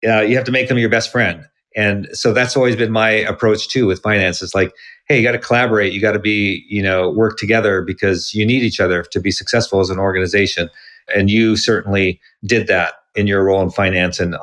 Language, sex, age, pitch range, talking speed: English, male, 50-69, 100-125 Hz, 235 wpm